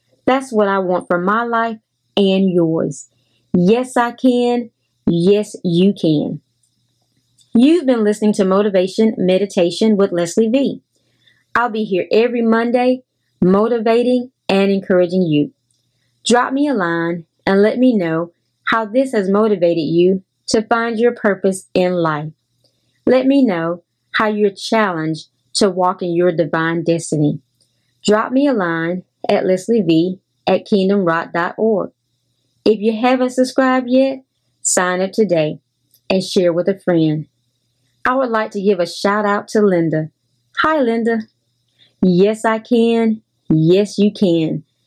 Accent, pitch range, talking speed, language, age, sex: American, 160-220 Hz, 140 wpm, English, 30-49, female